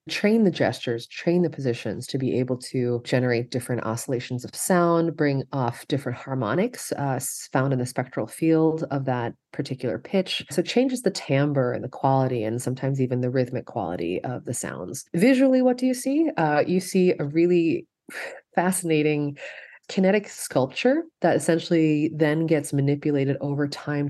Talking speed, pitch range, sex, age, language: 165 wpm, 125-160 Hz, female, 30-49, English